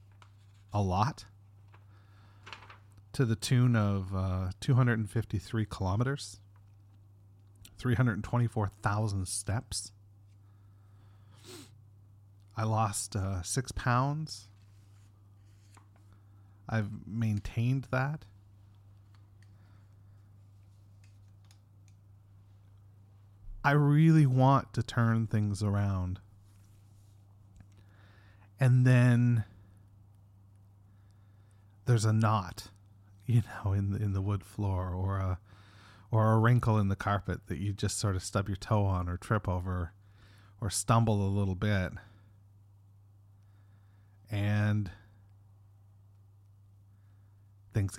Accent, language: American, English